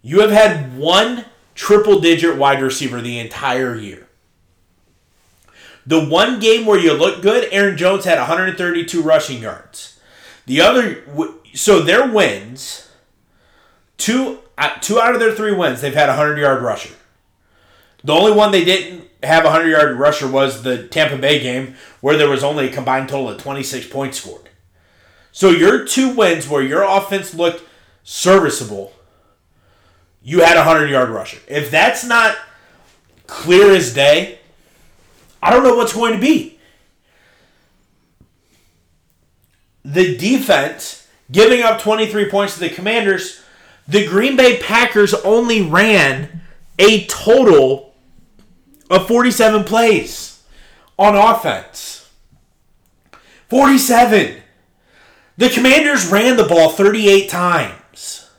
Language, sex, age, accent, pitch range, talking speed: English, male, 30-49, American, 130-215 Hz, 125 wpm